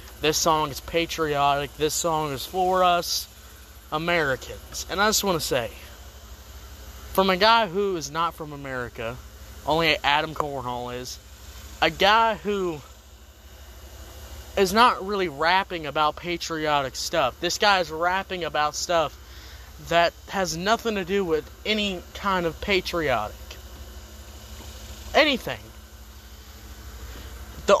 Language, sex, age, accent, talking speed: English, male, 20-39, American, 120 wpm